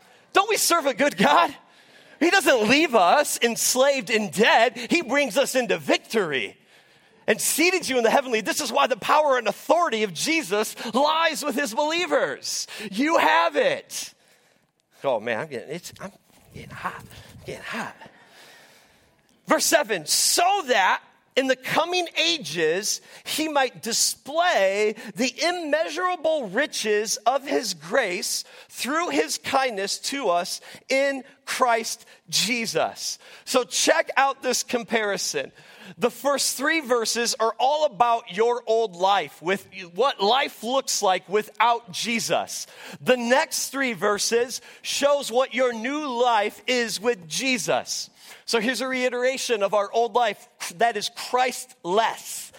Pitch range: 225-285 Hz